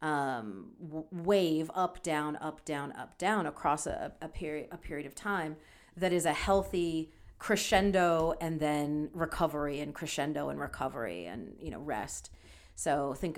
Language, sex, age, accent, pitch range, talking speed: English, female, 40-59, American, 150-185 Hz, 155 wpm